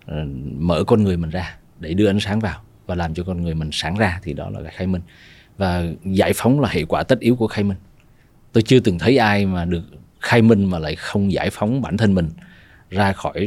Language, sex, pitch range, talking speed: Vietnamese, male, 85-110 Hz, 235 wpm